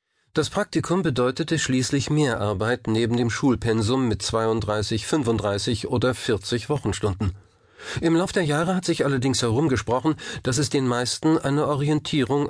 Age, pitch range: 40-59, 105-140 Hz